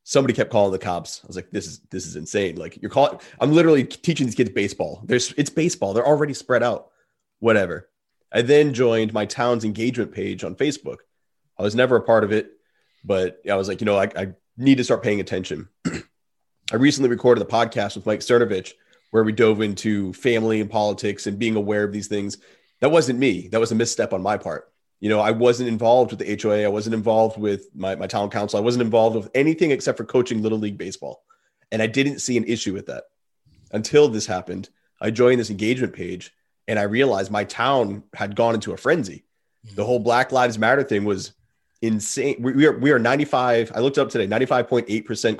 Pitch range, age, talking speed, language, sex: 105-125 Hz, 30-49, 215 wpm, English, male